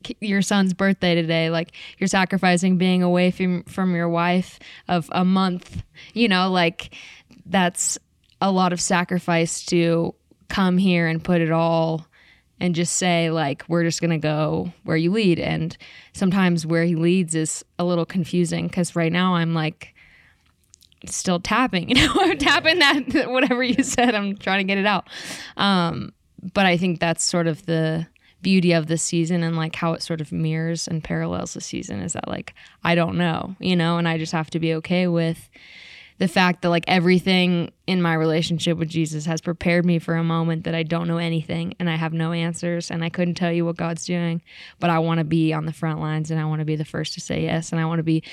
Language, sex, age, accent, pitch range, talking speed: English, female, 10-29, American, 165-180 Hz, 210 wpm